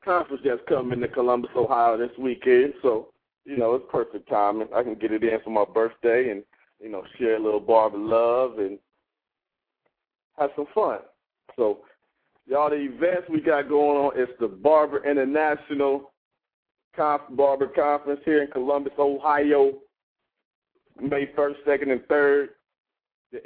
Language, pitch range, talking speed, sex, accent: English, 115-140 Hz, 150 wpm, male, American